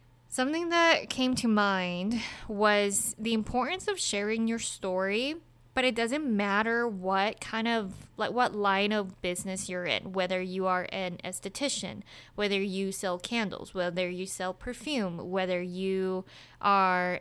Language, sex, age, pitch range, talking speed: English, female, 20-39, 185-220 Hz, 145 wpm